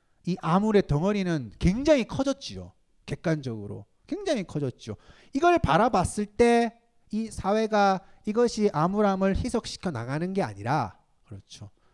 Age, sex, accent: 30-49, male, native